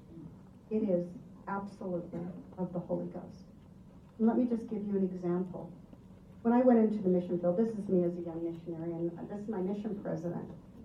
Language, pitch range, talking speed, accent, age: English, 170-195 Hz, 190 wpm, American, 50-69